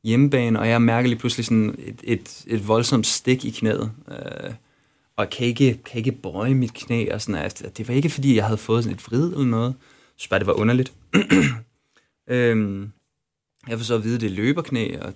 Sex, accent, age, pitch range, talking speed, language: male, native, 20-39, 110-130 Hz, 200 wpm, Danish